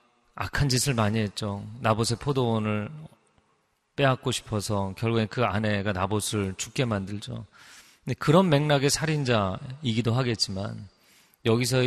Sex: male